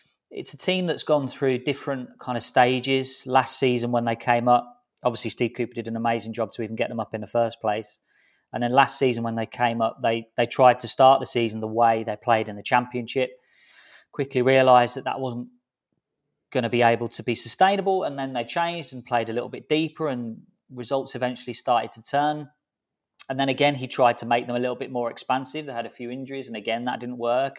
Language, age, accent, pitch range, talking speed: English, 20-39, British, 120-135 Hz, 230 wpm